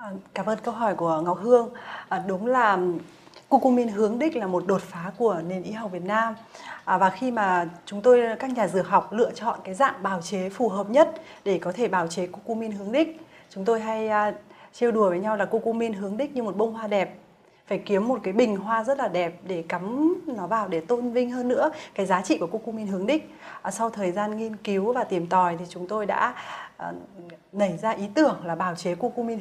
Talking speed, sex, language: 220 wpm, female, Vietnamese